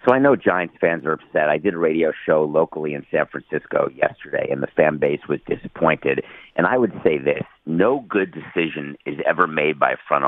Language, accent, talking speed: English, American, 215 wpm